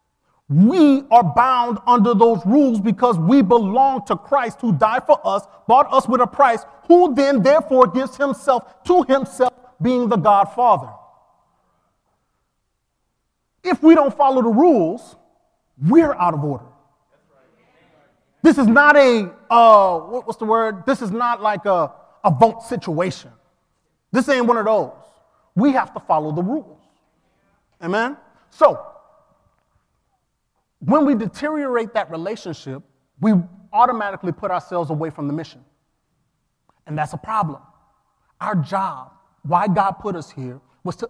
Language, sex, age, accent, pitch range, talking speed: English, male, 30-49, American, 165-240 Hz, 140 wpm